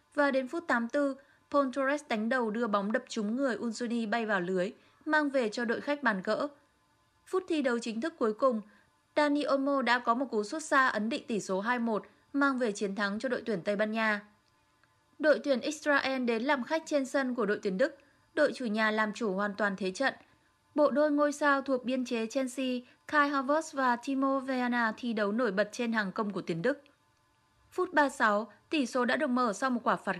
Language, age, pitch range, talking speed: Vietnamese, 20-39, 225-280 Hz, 215 wpm